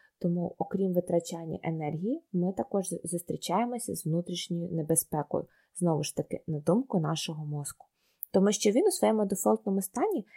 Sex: female